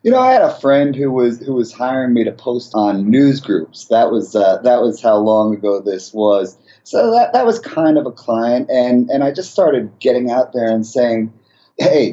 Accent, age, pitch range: American, 30-49, 115-145 Hz